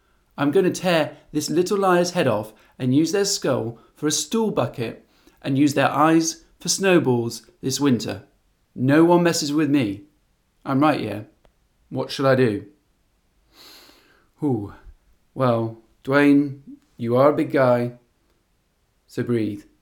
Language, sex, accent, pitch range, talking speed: English, male, British, 115-155 Hz, 140 wpm